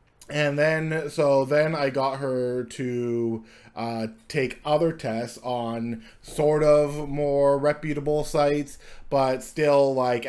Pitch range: 120-145 Hz